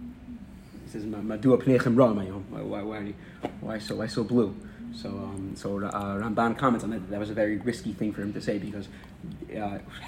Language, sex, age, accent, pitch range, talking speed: English, male, 30-49, American, 100-115 Hz, 180 wpm